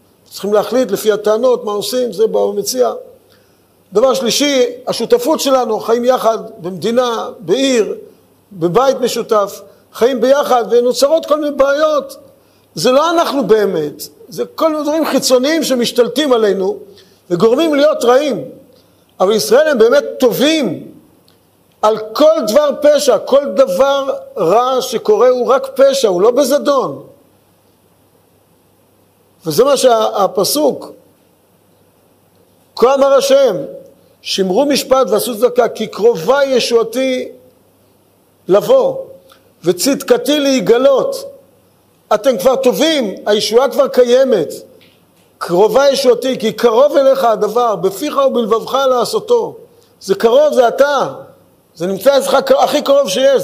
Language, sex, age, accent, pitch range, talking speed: Hebrew, male, 50-69, native, 230-285 Hz, 110 wpm